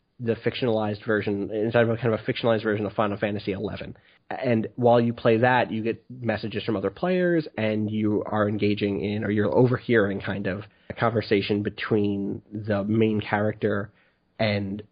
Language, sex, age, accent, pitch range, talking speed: English, male, 30-49, American, 105-115 Hz, 175 wpm